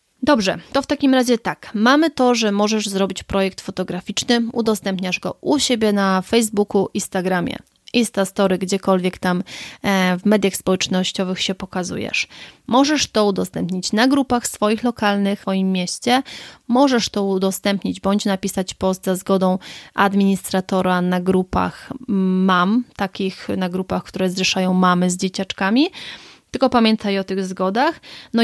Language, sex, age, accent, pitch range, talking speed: Polish, female, 20-39, native, 190-230 Hz, 135 wpm